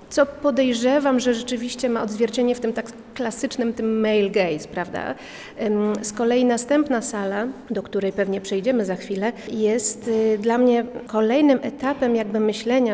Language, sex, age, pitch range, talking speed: Polish, female, 40-59, 200-235 Hz, 145 wpm